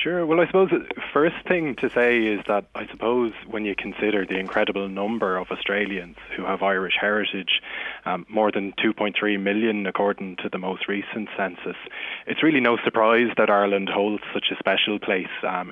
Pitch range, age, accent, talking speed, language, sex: 100-115 Hz, 20-39, Irish, 185 wpm, English, male